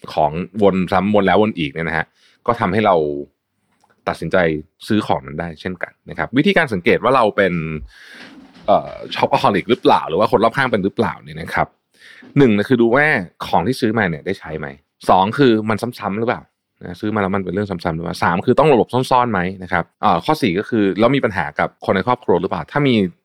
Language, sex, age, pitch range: Thai, male, 20-39, 80-110 Hz